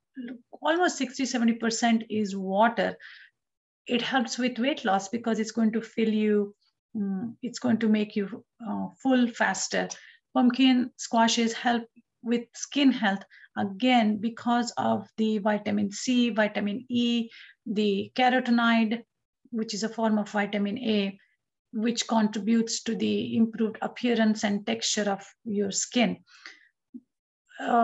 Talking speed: 125 wpm